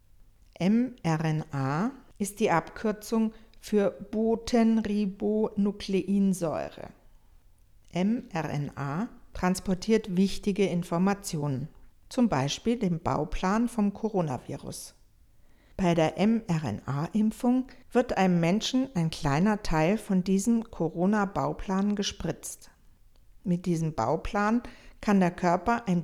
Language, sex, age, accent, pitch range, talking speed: German, female, 50-69, German, 145-205 Hz, 85 wpm